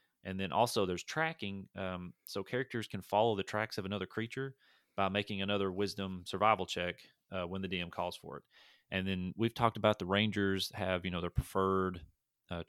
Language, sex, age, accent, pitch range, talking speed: English, male, 30-49, American, 95-105 Hz, 195 wpm